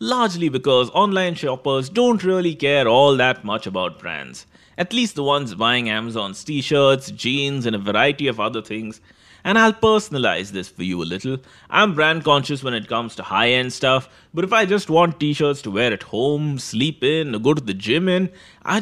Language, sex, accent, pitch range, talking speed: English, male, Indian, 120-180 Hz, 200 wpm